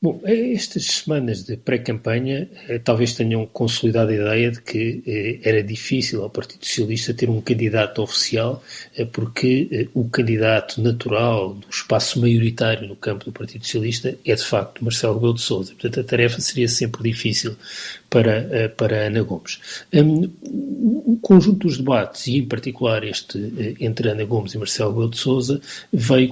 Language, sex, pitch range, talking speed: Portuguese, male, 110-130 Hz, 155 wpm